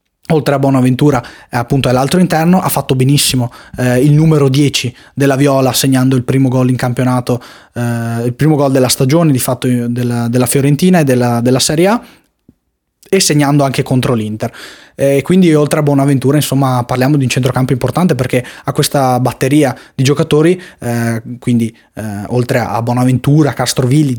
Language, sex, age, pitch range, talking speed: Italian, male, 20-39, 125-150 Hz, 165 wpm